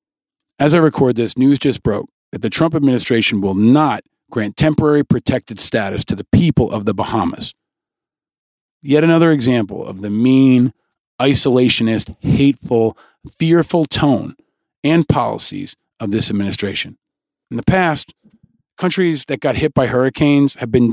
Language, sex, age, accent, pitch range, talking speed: English, male, 40-59, American, 120-150 Hz, 140 wpm